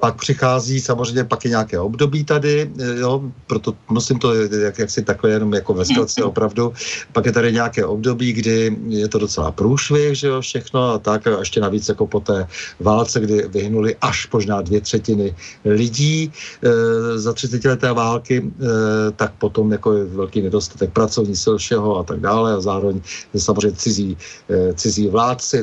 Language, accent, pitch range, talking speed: Czech, native, 105-115 Hz, 165 wpm